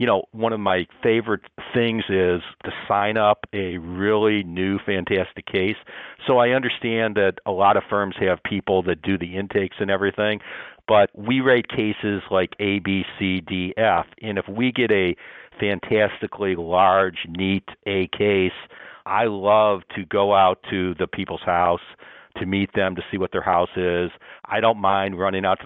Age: 50-69